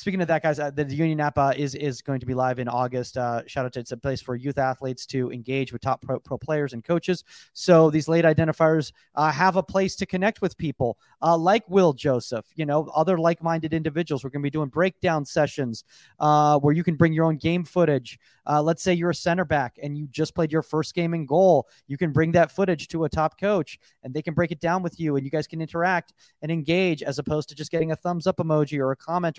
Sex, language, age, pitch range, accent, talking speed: male, English, 30-49, 140-170 Hz, American, 255 wpm